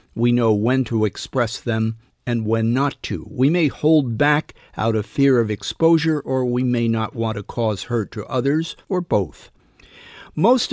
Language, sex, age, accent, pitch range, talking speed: English, male, 50-69, American, 110-135 Hz, 180 wpm